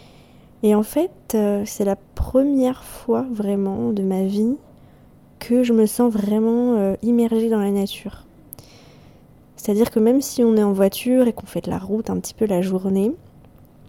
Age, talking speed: 20-39, 170 wpm